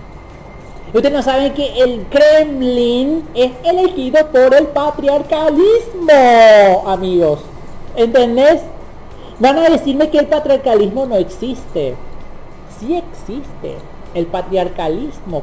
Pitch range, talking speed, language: 170-255 Hz, 95 wpm, Spanish